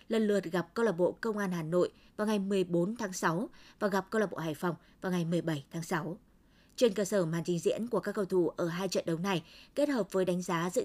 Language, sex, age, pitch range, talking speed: Vietnamese, female, 20-39, 180-220 Hz, 265 wpm